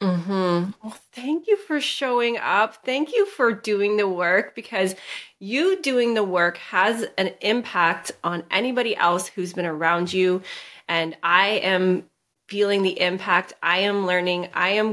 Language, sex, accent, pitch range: English, female, American, 185-240 Hz